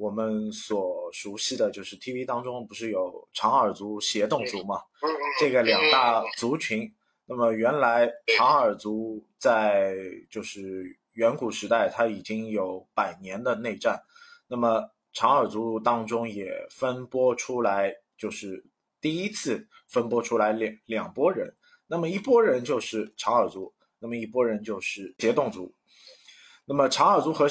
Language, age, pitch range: Chinese, 20-39, 110-145 Hz